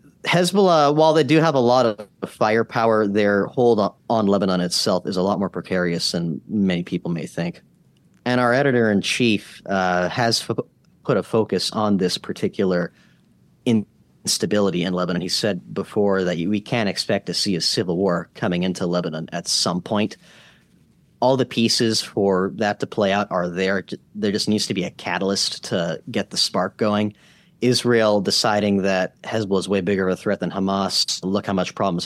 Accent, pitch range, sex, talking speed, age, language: American, 95-115 Hz, male, 175 wpm, 30-49, English